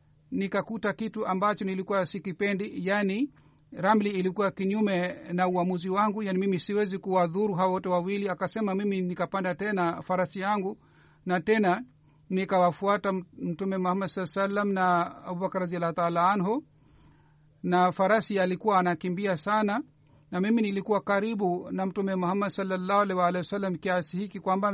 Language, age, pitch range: Swahili, 50-69, 180-205 Hz